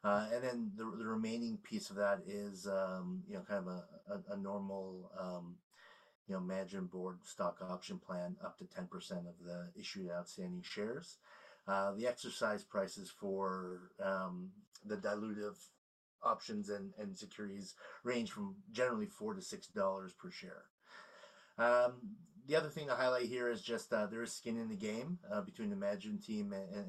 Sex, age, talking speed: male, 30-49, 170 wpm